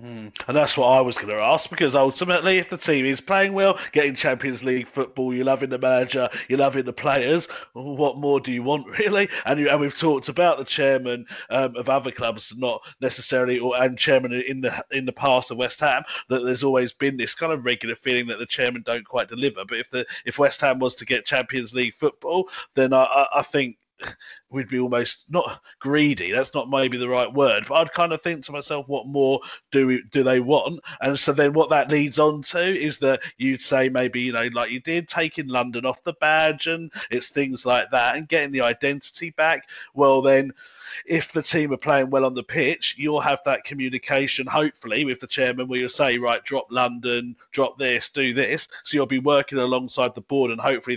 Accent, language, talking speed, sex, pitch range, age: British, English, 220 wpm, male, 125-150 Hz, 30-49